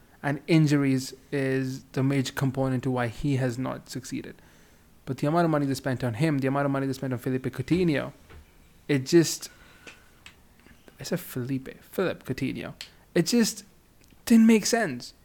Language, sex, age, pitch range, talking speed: English, male, 20-39, 135-165 Hz, 165 wpm